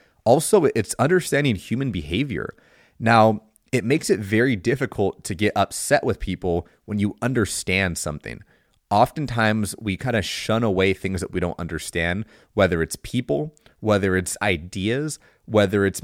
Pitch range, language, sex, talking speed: 90-120 Hz, English, male, 145 wpm